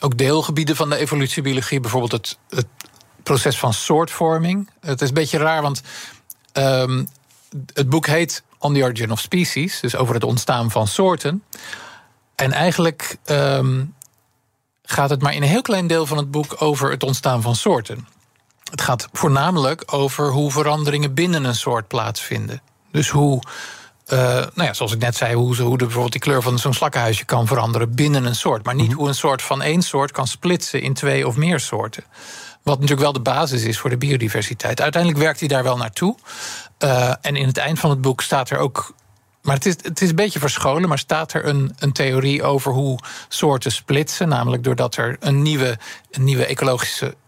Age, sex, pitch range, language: 50-69, male, 125-155 Hz, Dutch